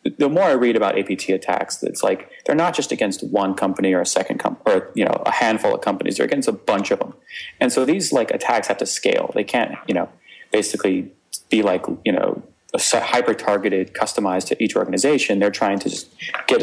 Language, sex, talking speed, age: English, male, 215 wpm, 30-49